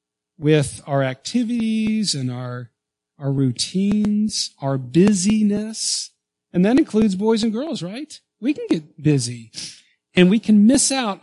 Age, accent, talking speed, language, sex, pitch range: 40-59, American, 135 wpm, English, male, 115-185 Hz